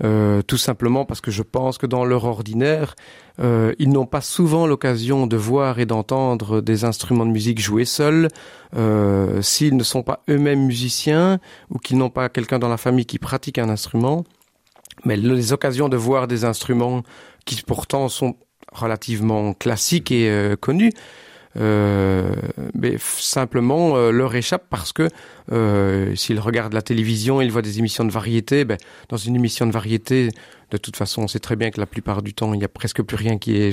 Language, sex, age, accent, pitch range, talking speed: French, male, 40-59, French, 110-135 Hz, 190 wpm